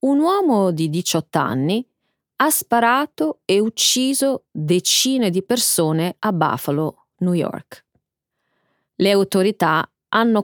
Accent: native